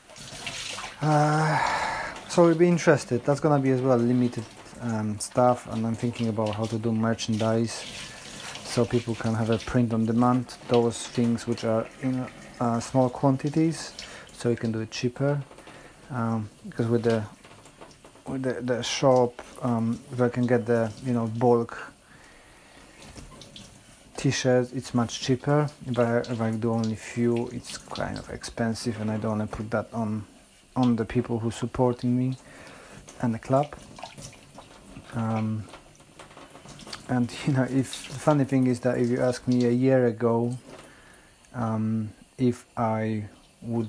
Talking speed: 160 wpm